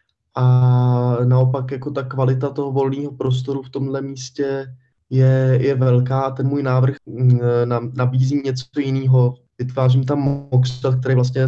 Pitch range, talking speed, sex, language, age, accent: 120-130 Hz, 130 wpm, male, Czech, 20-39, native